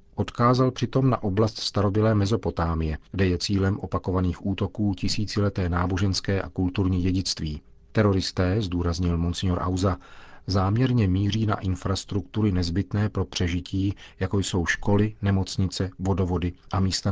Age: 40-59